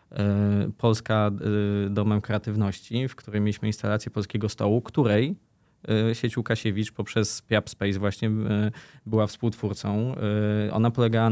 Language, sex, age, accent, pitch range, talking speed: Polish, male, 20-39, native, 105-115 Hz, 105 wpm